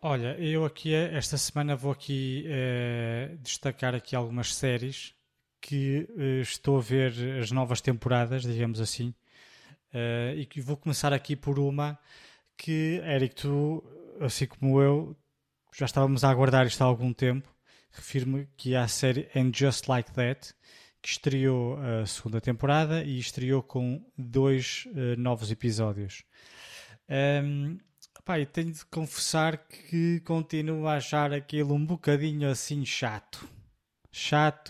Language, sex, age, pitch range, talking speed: Portuguese, male, 20-39, 125-150 Hz, 140 wpm